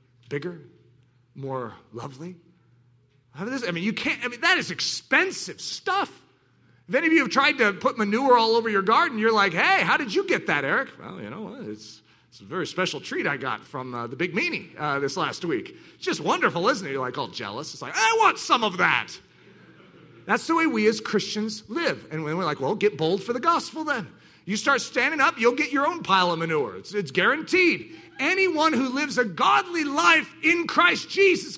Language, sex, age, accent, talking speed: English, male, 40-59, American, 210 wpm